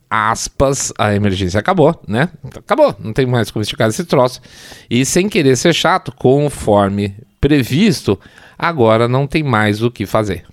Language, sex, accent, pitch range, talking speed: Portuguese, male, Brazilian, 105-145 Hz, 155 wpm